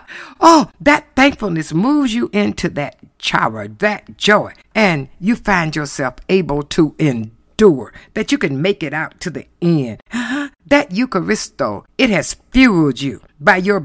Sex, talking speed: female, 145 wpm